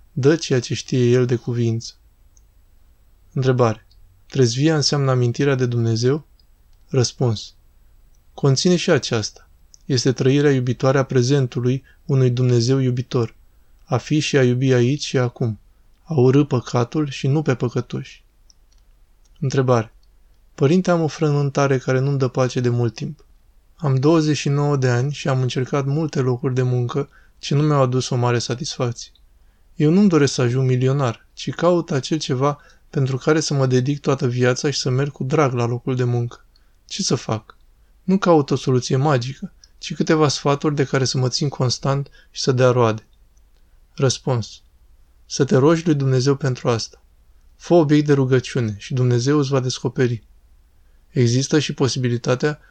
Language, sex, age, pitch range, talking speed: Romanian, male, 20-39, 120-145 Hz, 155 wpm